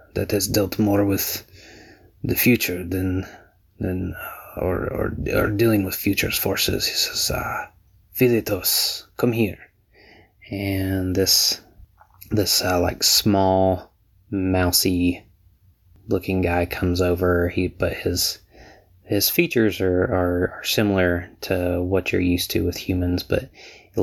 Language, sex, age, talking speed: English, male, 20-39, 125 wpm